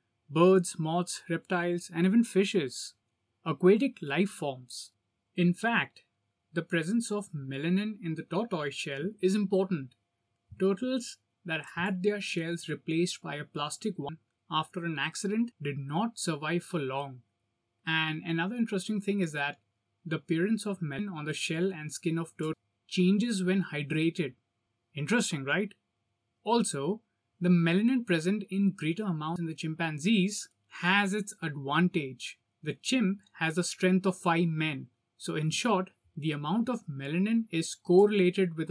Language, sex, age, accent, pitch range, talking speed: English, male, 20-39, Indian, 150-190 Hz, 145 wpm